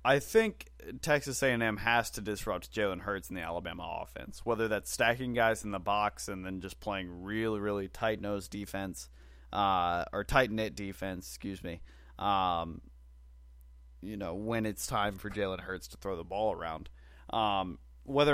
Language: English